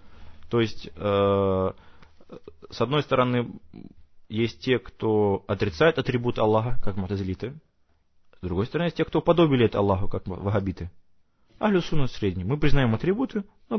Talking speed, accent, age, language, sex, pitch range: 145 wpm, native, 20-39, Russian, male, 90-130 Hz